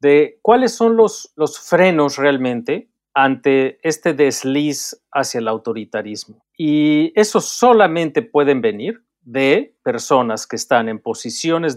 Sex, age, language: male, 40-59, Spanish